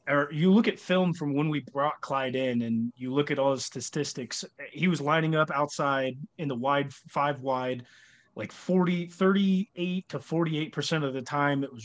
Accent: American